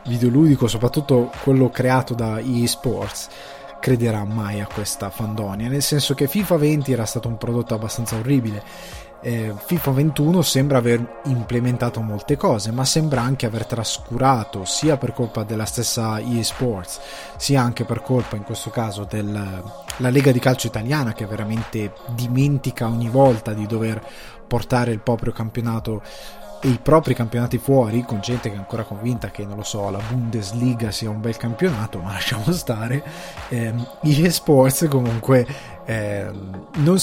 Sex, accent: male, native